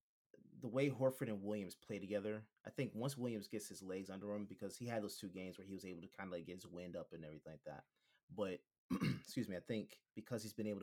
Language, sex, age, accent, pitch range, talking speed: English, male, 30-49, American, 90-115 Hz, 260 wpm